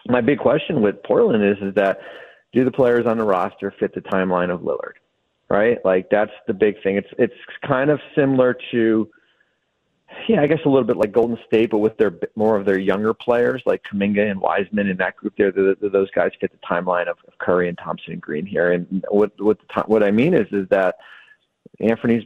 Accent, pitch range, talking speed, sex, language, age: American, 95-115 Hz, 220 wpm, male, English, 40-59